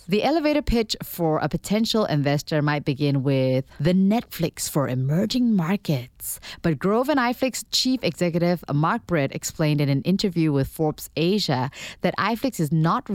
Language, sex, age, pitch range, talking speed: English, female, 20-39, 150-210 Hz, 155 wpm